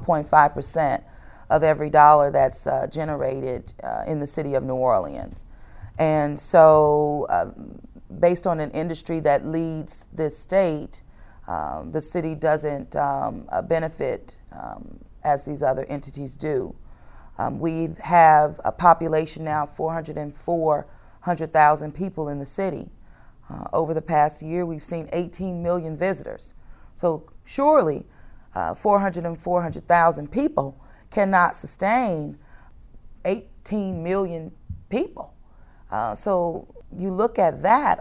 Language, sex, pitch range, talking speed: English, female, 150-175 Hz, 125 wpm